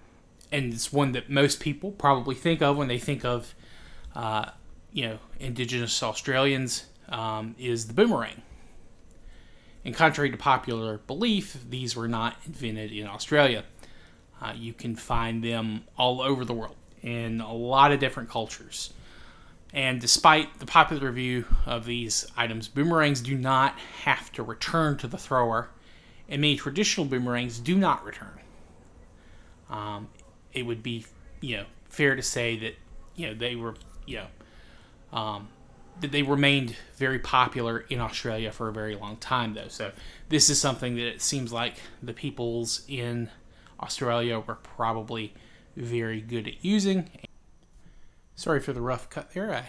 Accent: American